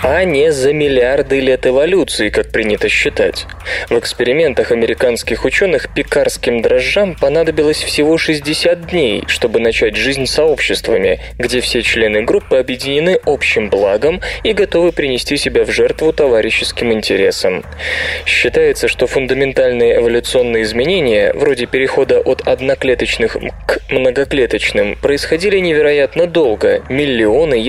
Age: 20-39